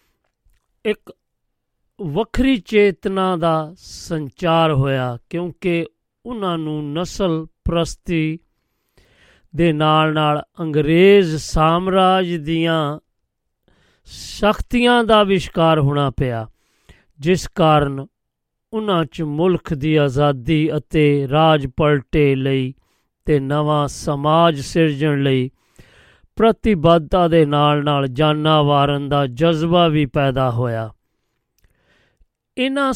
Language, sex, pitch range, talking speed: Punjabi, male, 145-175 Hz, 85 wpm